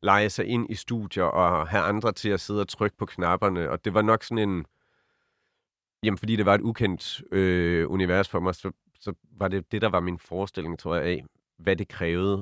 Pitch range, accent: 85-105 Hz, native